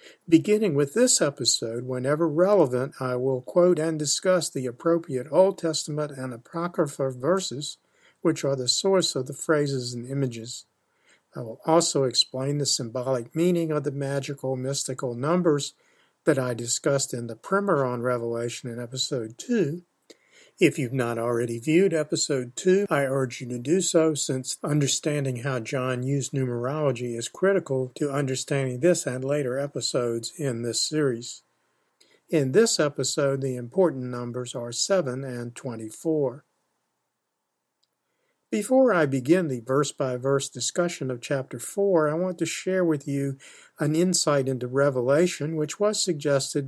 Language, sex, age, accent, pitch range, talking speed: English, male, 50-69, American, 130-165 Hz, 145 wpm